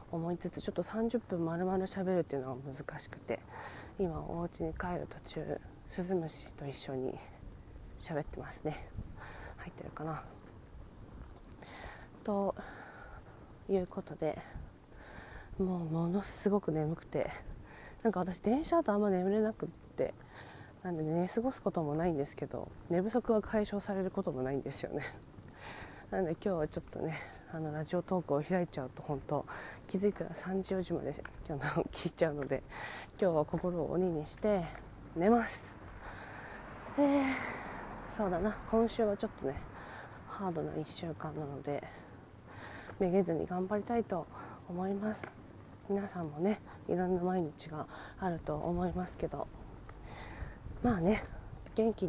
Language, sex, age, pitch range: Japanese, female, 20-39, 150-200 Hz